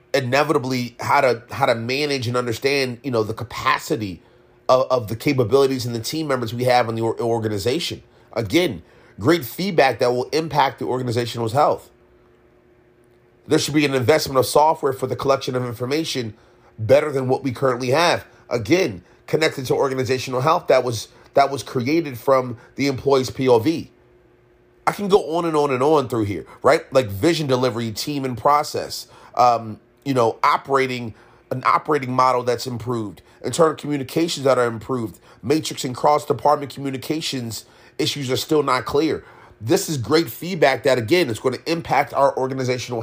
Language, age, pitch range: English, 30-49, 120-145 Hz